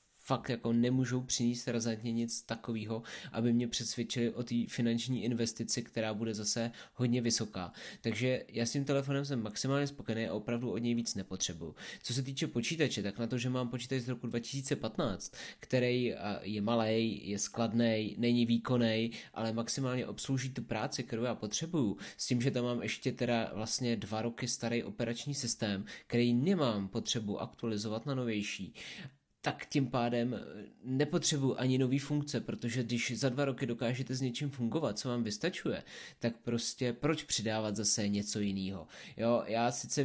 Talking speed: 160 wpm